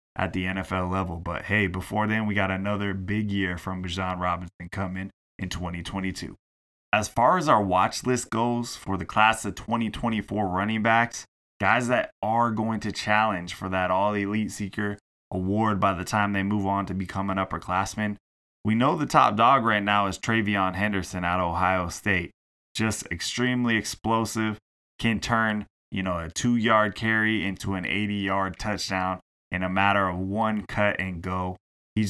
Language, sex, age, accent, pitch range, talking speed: English, male, 20-39, American, 95-110 Hz, 175 wpm